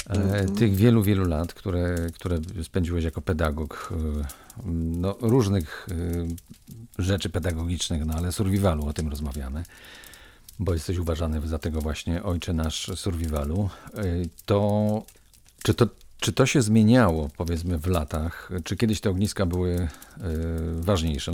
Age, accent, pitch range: 40-59, native, 80-100 Hz